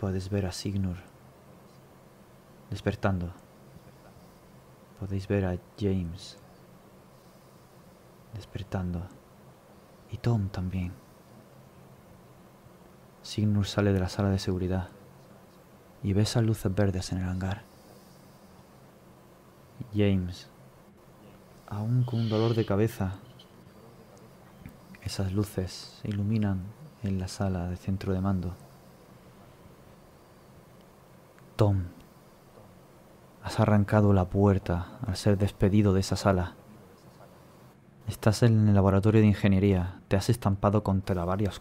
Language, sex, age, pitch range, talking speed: Spanish, male, 20-39, 90-105 Hz, 100 wpm